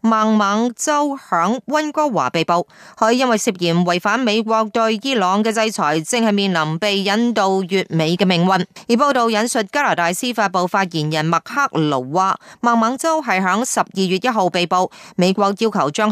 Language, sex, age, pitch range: Chinese, female, 30-49, 185-235 Hz